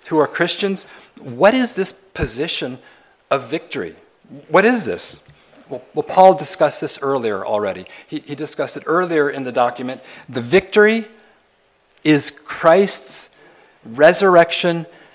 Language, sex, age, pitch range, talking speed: English, male, 40-59, 135-185 Hz, 120 wpm